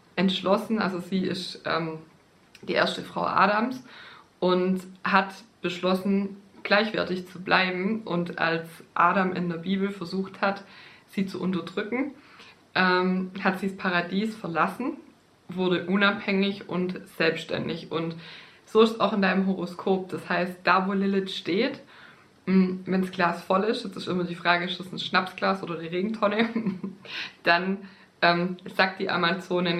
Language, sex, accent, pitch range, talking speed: German, female, German, 175-200 Hz, 145 wpm